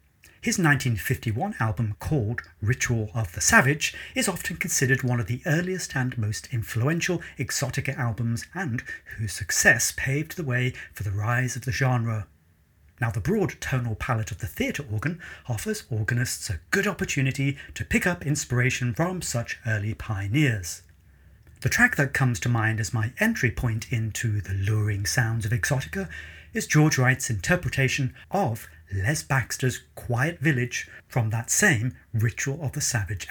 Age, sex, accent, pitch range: 40-59, male, British, 105-140 Hz